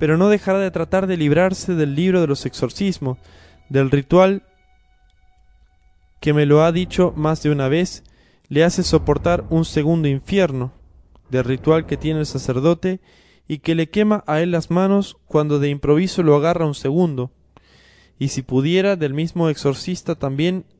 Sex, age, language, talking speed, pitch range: male, 20-39, Spanish, 165 wpm, 125-165 Hz